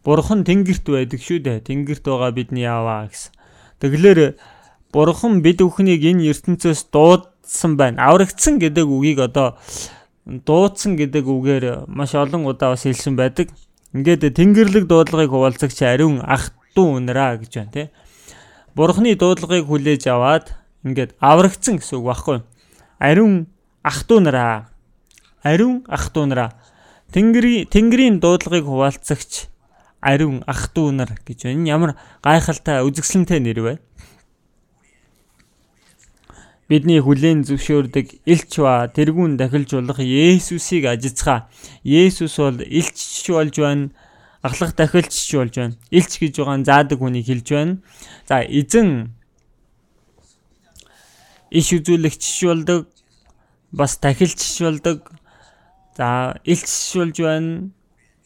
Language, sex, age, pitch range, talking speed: English, male, 20-39, 135-175 Hz, 85 wpm